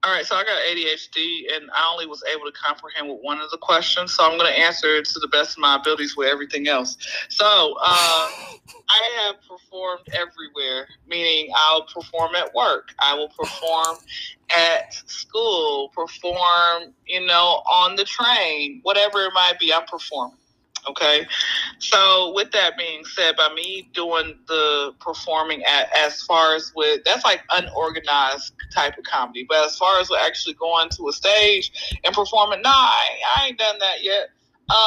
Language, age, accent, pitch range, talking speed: English, 30-49, American, 160-200 Hz, 180 wpm